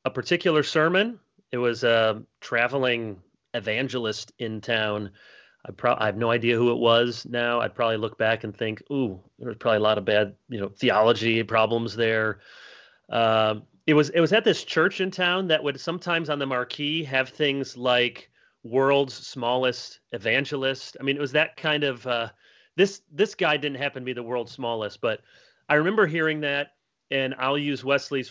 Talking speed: 185 wpm